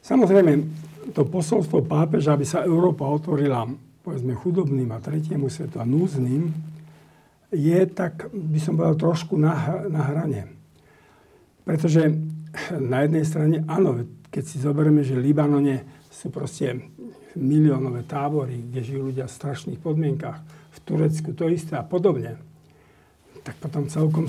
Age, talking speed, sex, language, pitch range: 60-79, 135 wpm, male, Slovak, 145-160 Hz